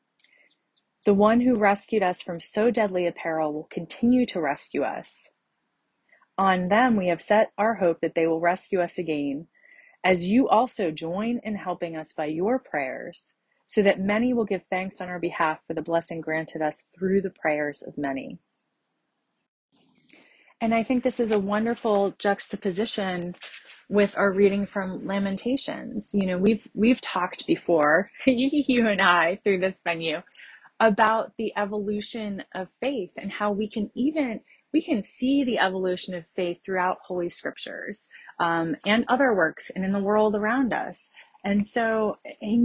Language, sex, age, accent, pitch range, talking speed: English, female, 30-49, American, 180-230 Hz, 160 wpm